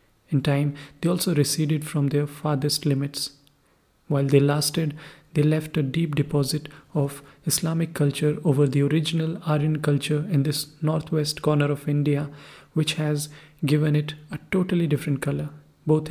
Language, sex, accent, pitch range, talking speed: English, male, Indian, 145-155 Hz, 150 wpm